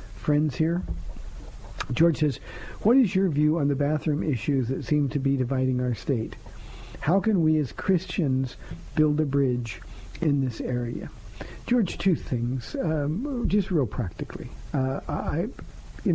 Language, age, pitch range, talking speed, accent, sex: English, 50-69, 130-160 Hz, 150 wpm, American, male